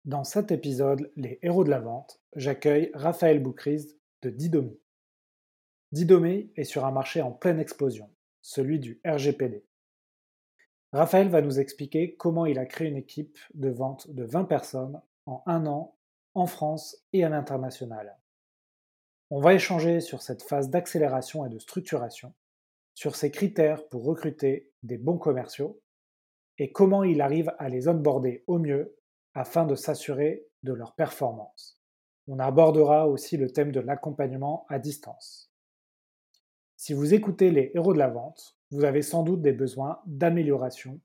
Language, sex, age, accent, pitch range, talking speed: French, male, 30-49, French, 135-165 Hz, 150 wpm